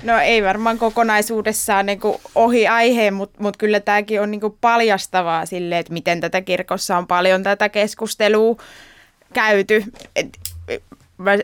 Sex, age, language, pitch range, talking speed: female, 20-39, Finnish, 190-215 Hz, 115 wpm